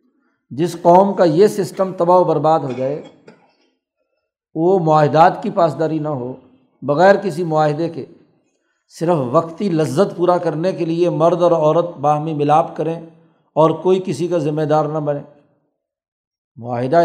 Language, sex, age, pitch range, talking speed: Urdu, male, 60-79, 150-165 Hz, 150 wpm